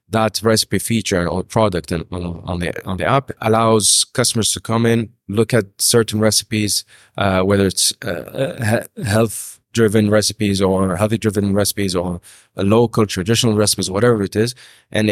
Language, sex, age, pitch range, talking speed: English, male, 30-49, 95-110 Hz, 145 wpm